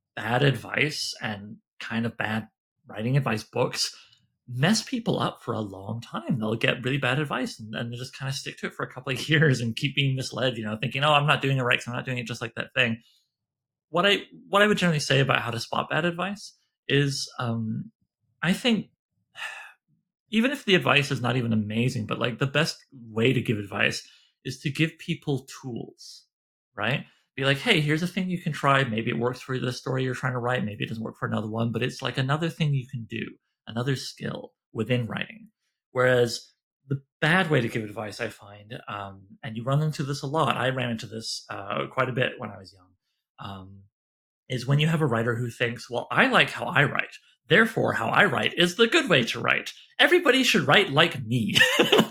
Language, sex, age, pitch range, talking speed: English, male, 30-49, 115-150 Hz, 220 wpm